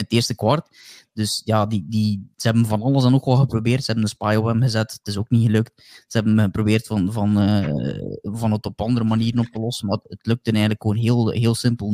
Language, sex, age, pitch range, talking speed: Dutch, male, 20-39, 110-130 Hz, 240 wpm